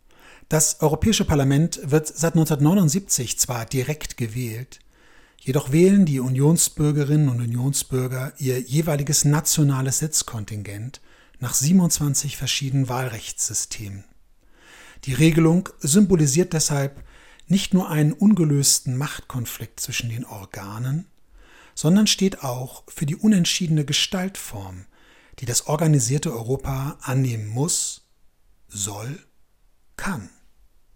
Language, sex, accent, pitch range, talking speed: German, male, German, 120-160 Hz, 95 wpm